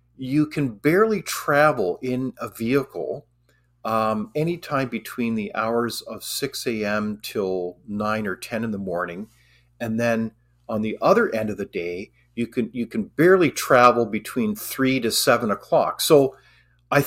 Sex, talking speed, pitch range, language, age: male, 155 wpm, 100-140 Hz, English, 40-59